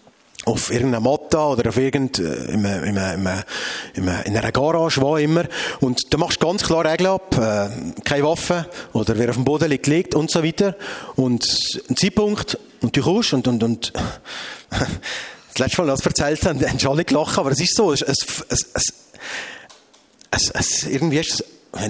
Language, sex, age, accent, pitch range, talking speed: German, male, 30-49, Austrian, 130-180 Hz, 175 wpm